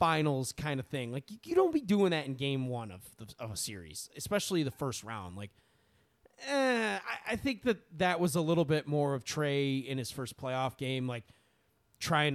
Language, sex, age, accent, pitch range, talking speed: English, male, 30-49, American, 120-165 Hz, 210 wpm